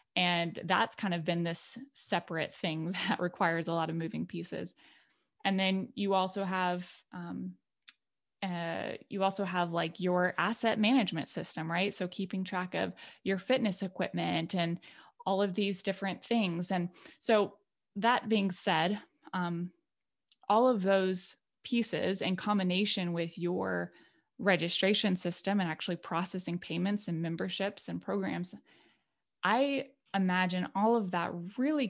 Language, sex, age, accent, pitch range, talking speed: English, female, 20-39, American, 175-205 Hz, 140 wpm